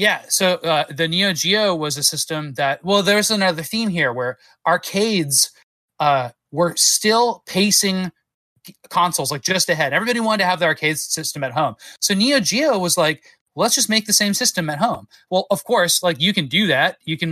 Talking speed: 200 wpm